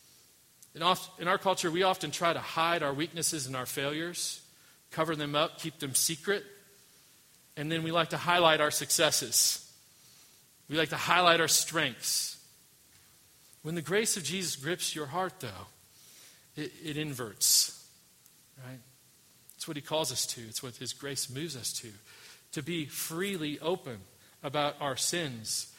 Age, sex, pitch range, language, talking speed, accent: 40-59, male, 130-165 Hz, English, 155 wpm, American